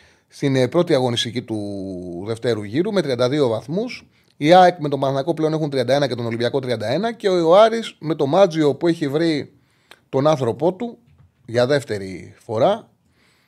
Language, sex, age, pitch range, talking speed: Greek, male, 30-49, 120-160 Hz, 160 wpm